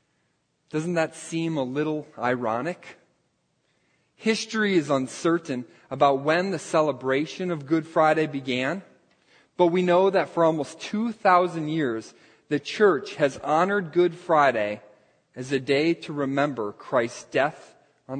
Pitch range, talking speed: 135-175 Hz, 130 wpm